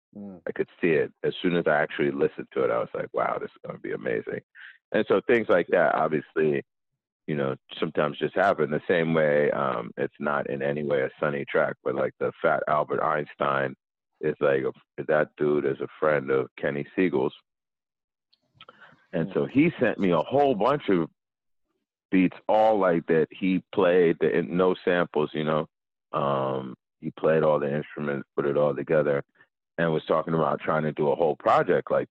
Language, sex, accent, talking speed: English, male, American, 190 wpm